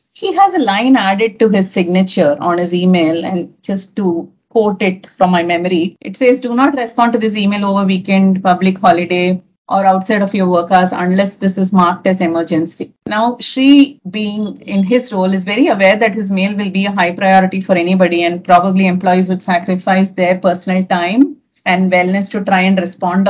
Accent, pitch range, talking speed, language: Indian, 180-225 Hz, 195 wpm, English